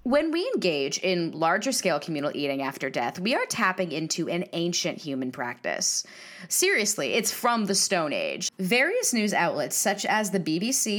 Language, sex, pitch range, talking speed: English, female, 175-235 Hz, 165 wpm